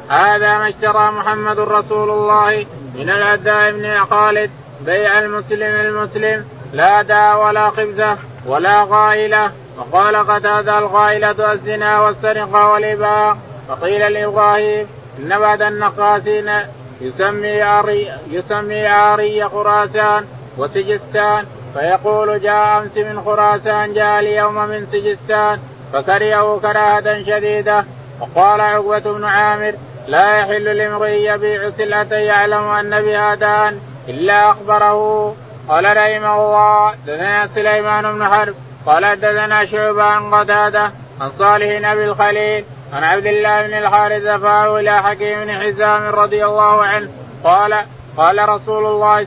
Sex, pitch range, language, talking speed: male, 205-210 Hz, Arabic, 115 wpm